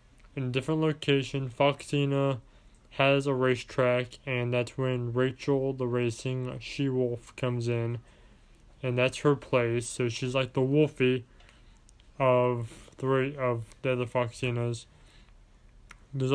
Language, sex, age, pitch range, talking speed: English, male, 20-39, 115-140 Hz, 125 wpm